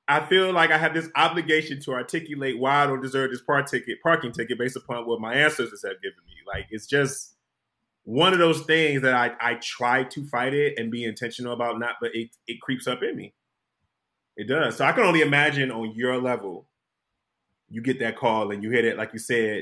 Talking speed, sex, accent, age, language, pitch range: 225 wpm, male, American, 30-49, English, 110-150 Hz